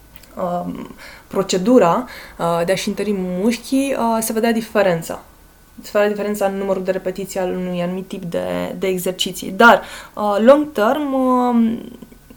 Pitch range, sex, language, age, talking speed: 180-225 Hz, female, Romanian, 20-39, 145 wpm